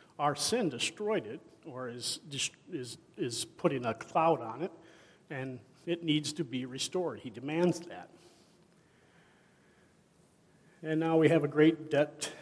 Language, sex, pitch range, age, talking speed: English, male, 140-165 Hz, 50-69, 140 wpm